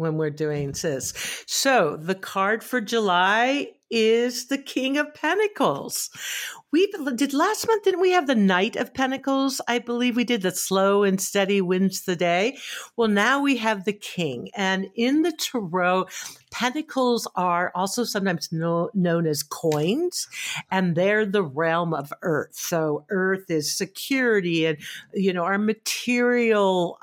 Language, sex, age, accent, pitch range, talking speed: English, female, 60-79, American, 170-235 Hz, 155 wpm